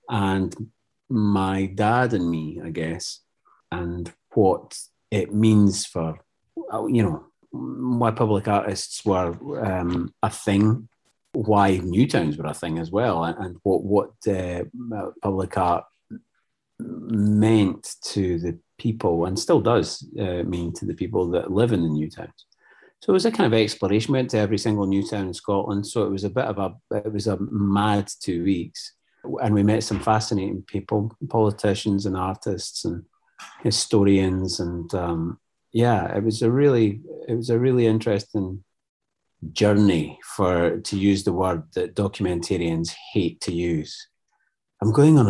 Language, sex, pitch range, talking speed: English, male, 95-110 Hz, 160 wpm